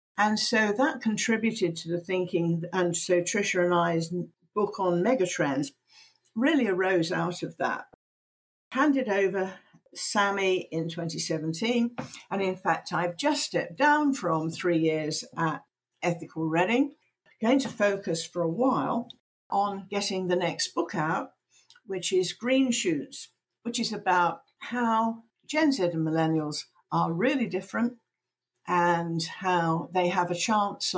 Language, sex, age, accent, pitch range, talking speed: English, female, 60-79, British, 175-235 Hz, 140 wpm